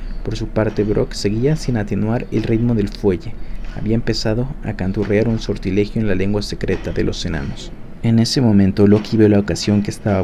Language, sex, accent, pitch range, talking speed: Spanish, male, Mexican, 100-115 Hz, 195 wpm